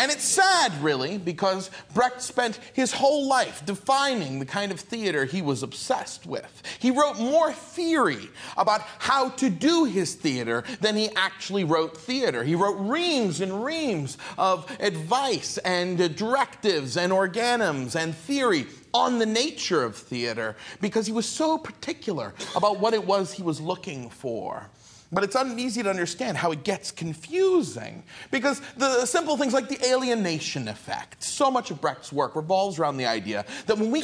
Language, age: English, 40-59